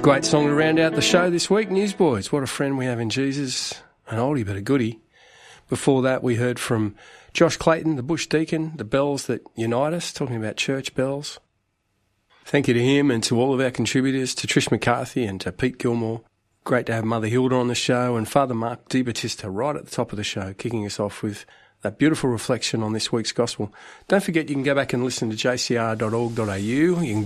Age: 40-59